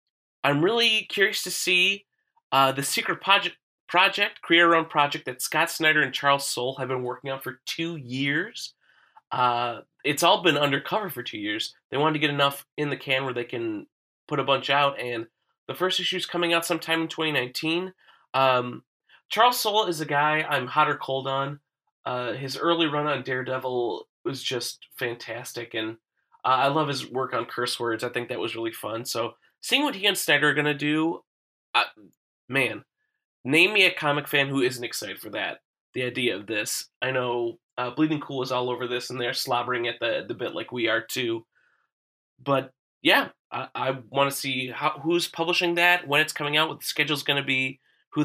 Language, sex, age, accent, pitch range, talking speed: English, male, 20-39, American, 130-165 Hz, 205 wpm